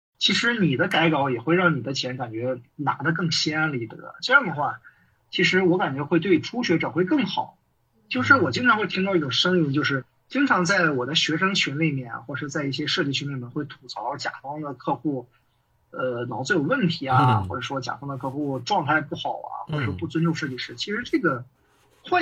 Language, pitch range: Chinese, 125-170 Hz